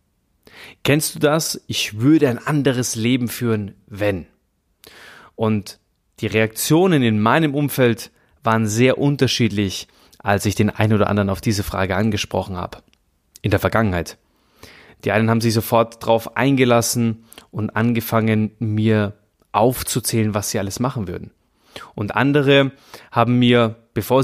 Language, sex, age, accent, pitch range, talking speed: German, male, 30-49, German, 105-130 Hz, 135 wpm